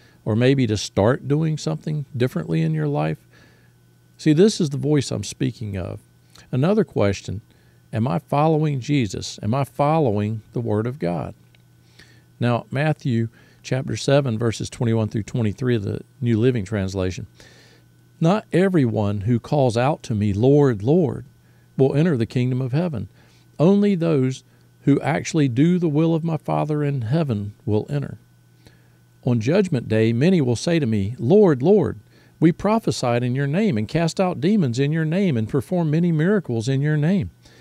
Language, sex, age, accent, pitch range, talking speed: English, male, 50-69, American, 105-150 Hz, 165 wpm